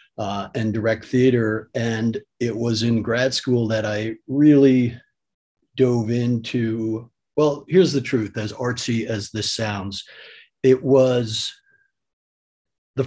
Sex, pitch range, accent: male, 110-135 Hz, American